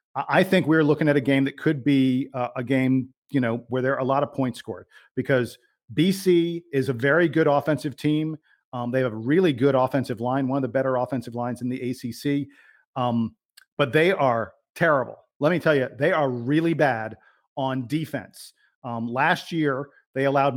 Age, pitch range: 40-59, 130-155 Hz